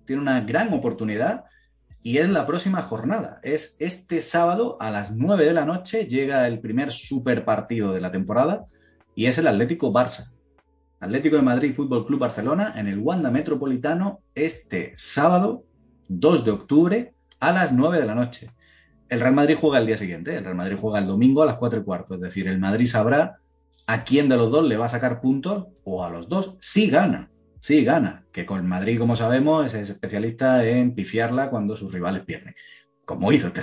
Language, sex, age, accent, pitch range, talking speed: Spanish, male, 30-49, Spanish, 110-155 Hz, 195 wpm